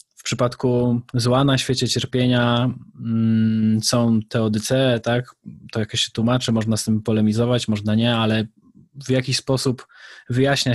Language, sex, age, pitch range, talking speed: Polish, male, 20-39, 115-130 Hz, 140 wpm